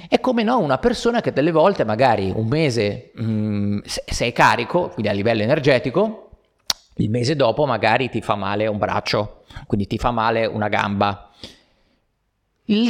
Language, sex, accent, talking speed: Italian, male, native, 160 wpm